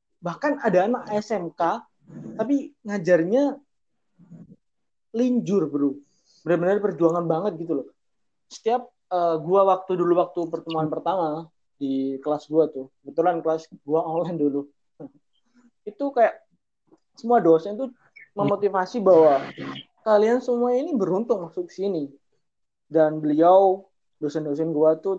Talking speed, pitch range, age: 115 wpm, 155-215 Hz, 20-39